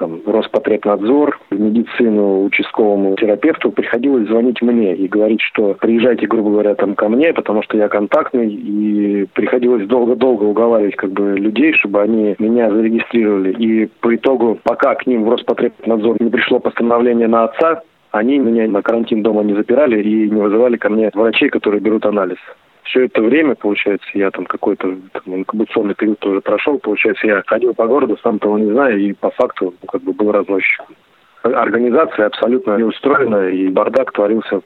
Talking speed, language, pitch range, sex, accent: 165 wpm, Russian, 105-120 Hz, male, native